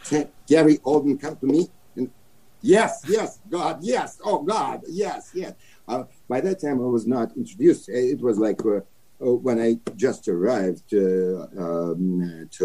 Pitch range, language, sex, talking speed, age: 95-125 Hz, English, male, 150 wpm, 60-79